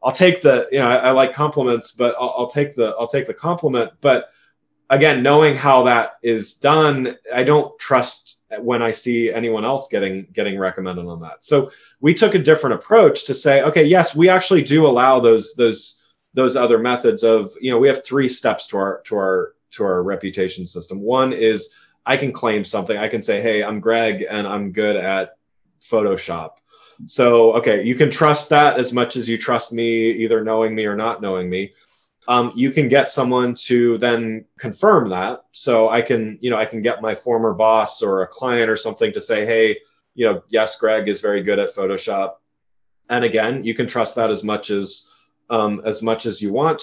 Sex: male